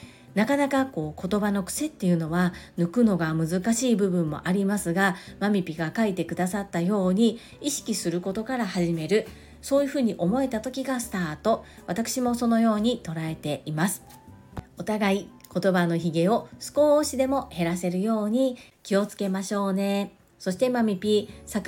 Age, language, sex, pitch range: 40-59, Japanese, female, 175-230 Hz